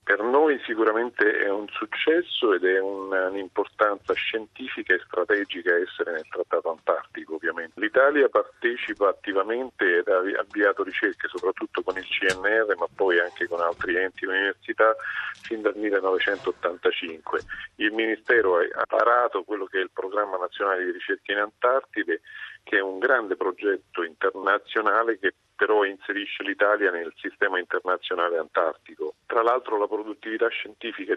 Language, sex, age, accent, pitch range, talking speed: Italian, male, 40-59, native, 345-435 Hz, 140 wpm